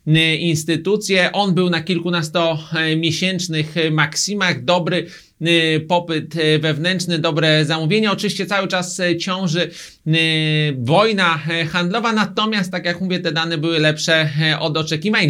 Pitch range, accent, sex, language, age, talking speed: 160-185 Hz, native, male, Polish, 30-49, 105 wpm